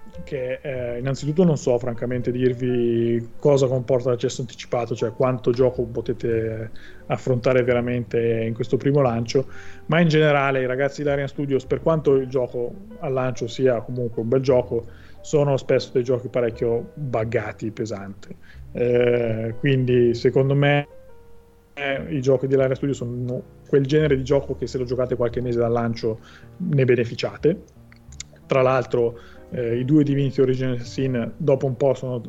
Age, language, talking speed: 30-49, Italian, 150 wpm